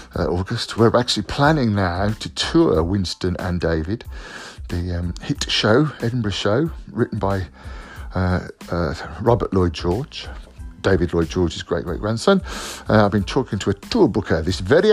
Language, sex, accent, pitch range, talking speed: English, male, British, 90-115 Hz, 155 wpm